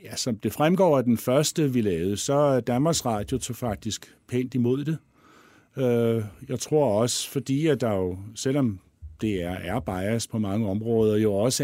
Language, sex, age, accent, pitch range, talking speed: Danish, male, 60-79, native, 100-125 Hz, 175 wpm